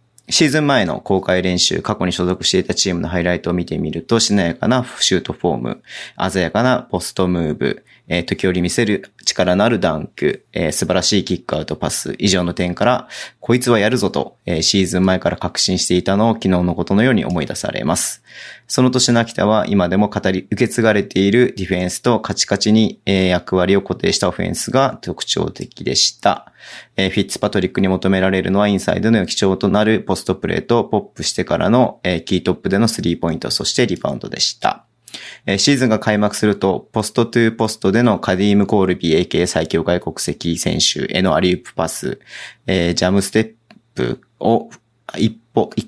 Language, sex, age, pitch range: Japanese, male, 30-49, 90-110 Hz